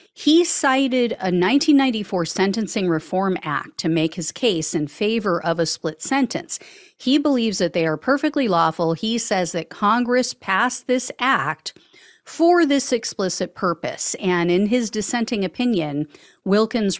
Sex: female